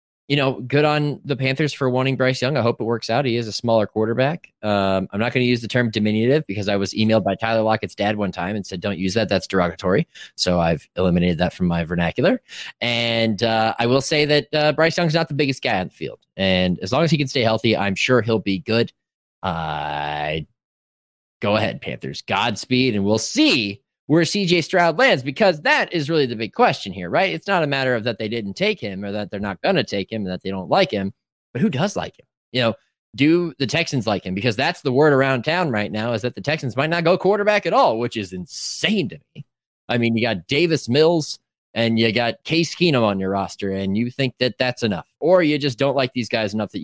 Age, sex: 20-39, male